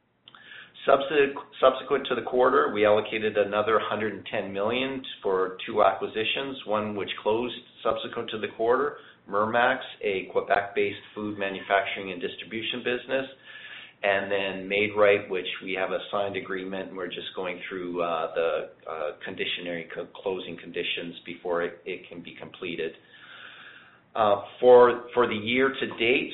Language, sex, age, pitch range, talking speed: English, male, 40-59, 100-125 Hz, 145 wpm